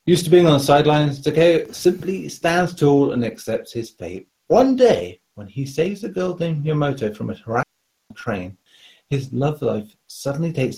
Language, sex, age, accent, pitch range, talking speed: English, male, 40-59, British, 110-155 Hz, 175 wpm